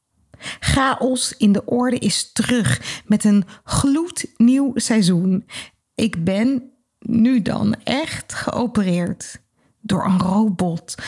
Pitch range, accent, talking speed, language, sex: 195-245 Hz, Dutch, 105 wpm, Dutch, female